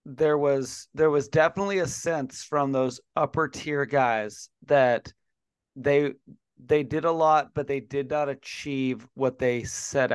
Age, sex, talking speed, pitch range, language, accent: 30-49, male, 155 wpm, 130-150 Hz, English, American